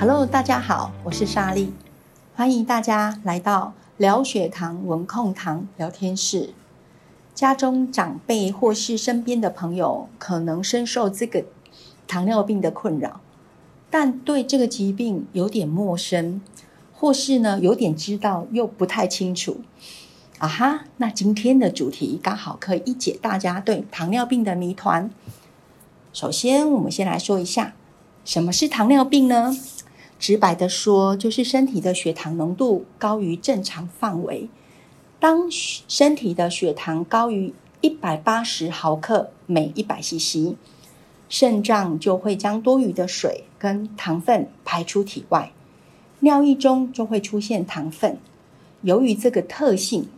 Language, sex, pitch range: Chinese, female, 180-245 Hz